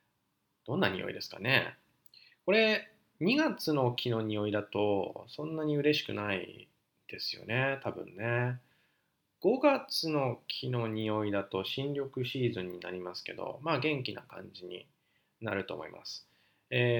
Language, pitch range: Japanese, 105-145 Hz